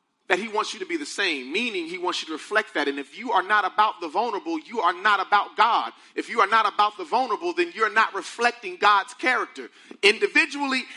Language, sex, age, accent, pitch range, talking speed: English, male, 40-59, American, 215-320 Hz, 230 wpm